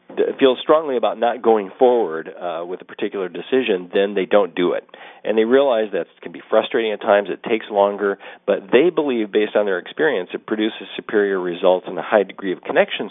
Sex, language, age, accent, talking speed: male, English, 50-69, American, 205 wpm